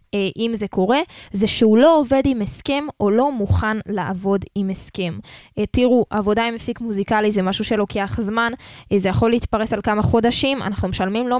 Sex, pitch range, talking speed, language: female, 210-275 Hz, 175 wpm, Hebrew